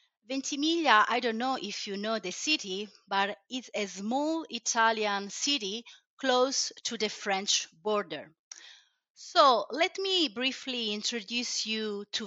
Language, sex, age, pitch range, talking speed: Turkish, female, 30-49, 205-265 Hz, 130 wpm